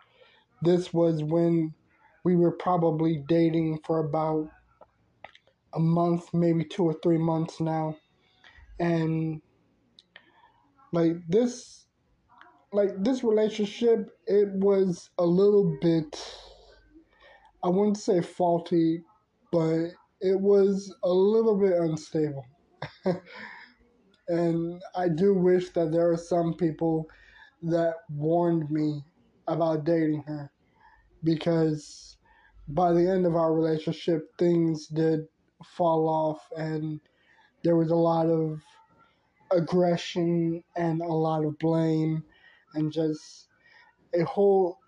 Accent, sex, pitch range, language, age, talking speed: American, male, 160-180 Hz, English, 20-39, 110 wpm